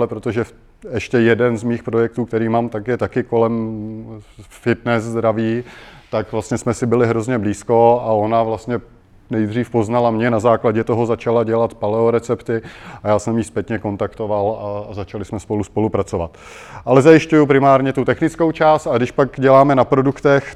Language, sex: Czech, male